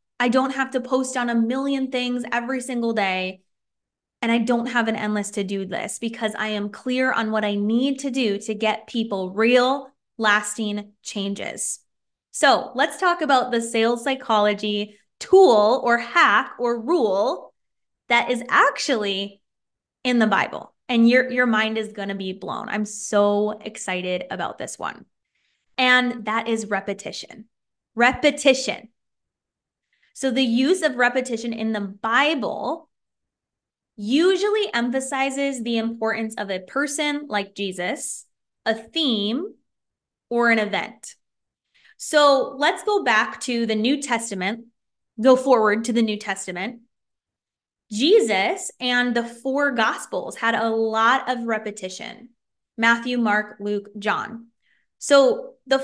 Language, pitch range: English, 215-265 Hz